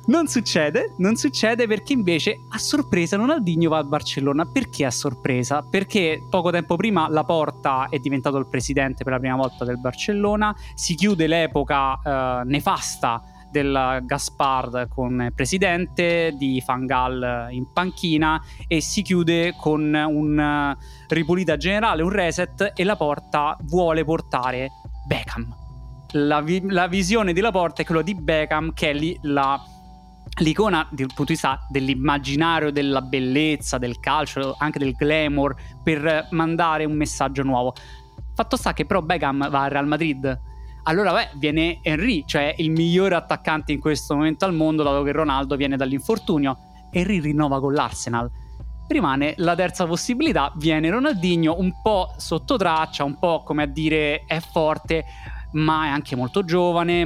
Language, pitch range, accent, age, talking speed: Italian, 135-170 Hz, native, 20-39, 150 wpm